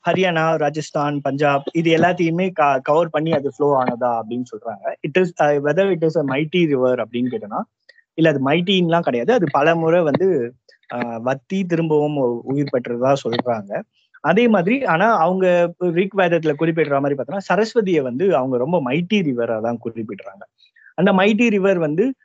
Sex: male